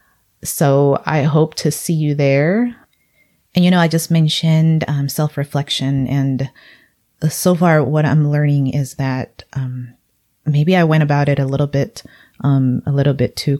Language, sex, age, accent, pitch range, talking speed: English, female, 30-49, American, 130-155 Hz, 165 wpm